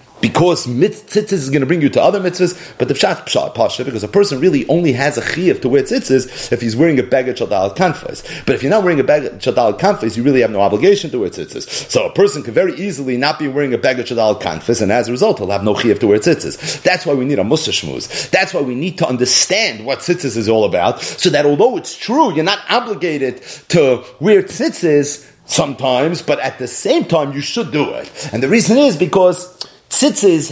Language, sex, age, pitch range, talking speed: English, male, 40-59, 135-195 Hz, 230 wpm